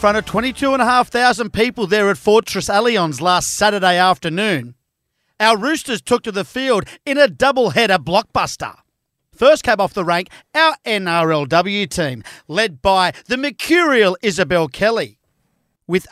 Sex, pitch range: male, 180-245 Hz